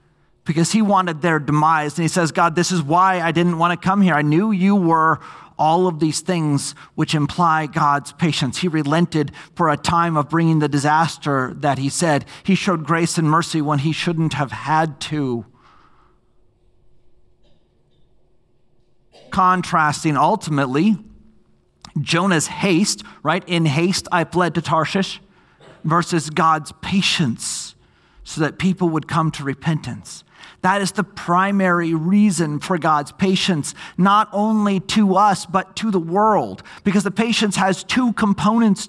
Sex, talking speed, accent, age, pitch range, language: male, 150 wpm, American, 40-59, 160-210 Hz, English